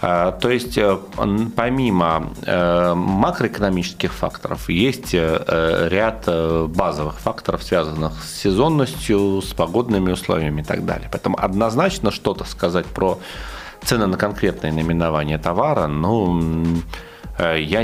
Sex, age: male, 40-59